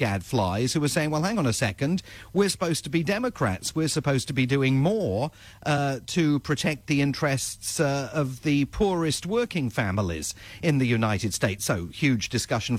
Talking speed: 180 wpm